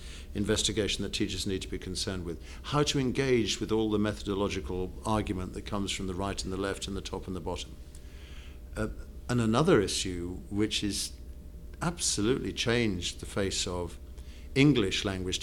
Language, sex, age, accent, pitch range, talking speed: English, male, 50-69, British, 85-110 Hz, 170 wpm